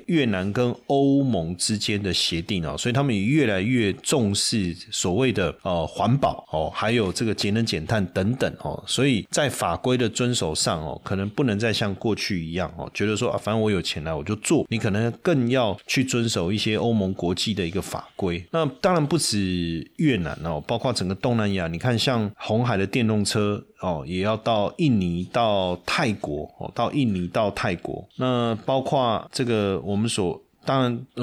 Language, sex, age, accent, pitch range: Chinese, male, 30-49, native, 95-120 Hz